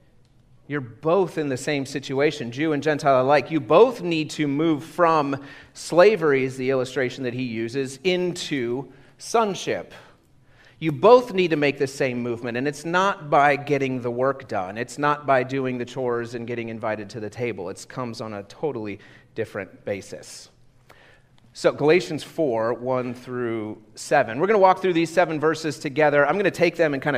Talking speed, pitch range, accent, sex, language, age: 180 wpm, 125-160 Hz, American, male, English, 40-59